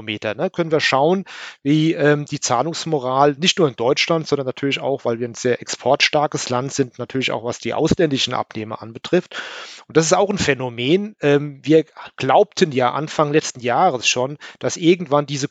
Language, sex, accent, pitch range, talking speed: German, male, German, 130-155 Hz, 165 wpm